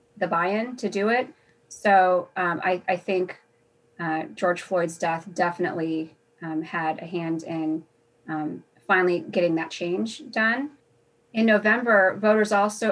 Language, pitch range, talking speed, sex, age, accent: English, 175-215 Hz, 140 wpm, female, 30-49, American